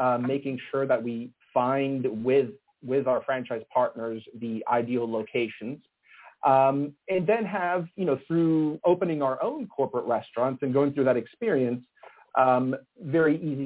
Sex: male